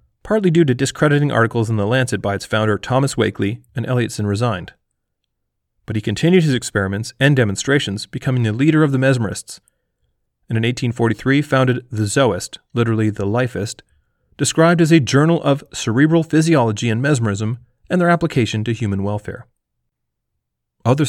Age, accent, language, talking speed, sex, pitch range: 30-49, American, English, 155 wpm, male, 105-140 Hz